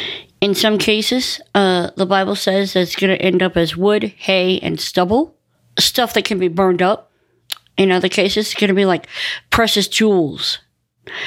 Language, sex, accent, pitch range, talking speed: English, female, American, 160-200 Hz, 180 wpm